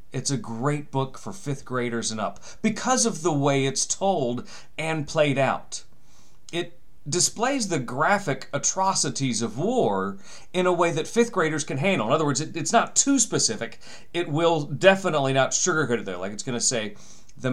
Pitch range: 120-165 Hz